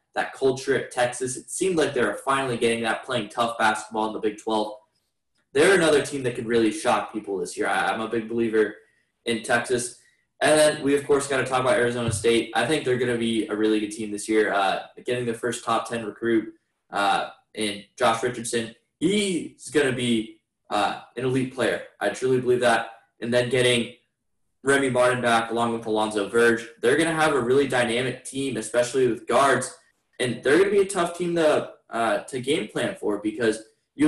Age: 10-29